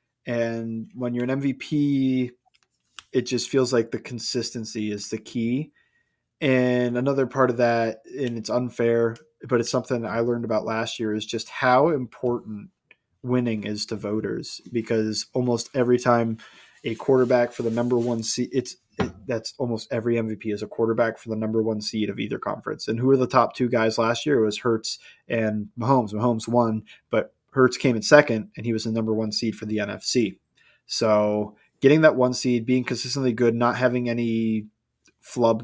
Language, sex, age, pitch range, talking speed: English, male, 20-39, 110-125 Hz, 185 wpm